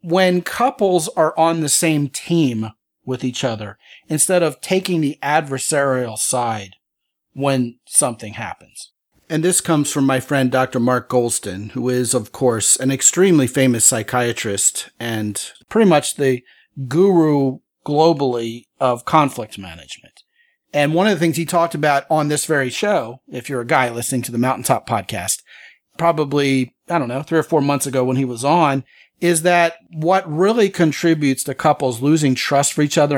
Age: 40-59